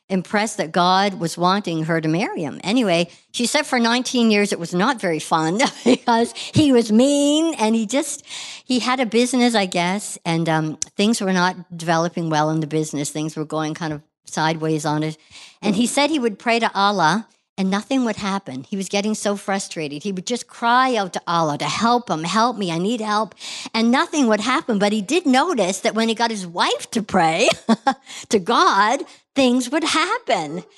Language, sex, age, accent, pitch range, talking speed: English, male, 60-79, American, 170-225 Hz, 205 wpm